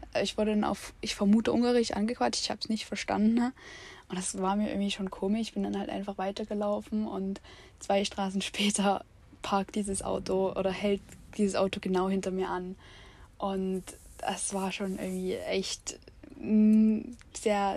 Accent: German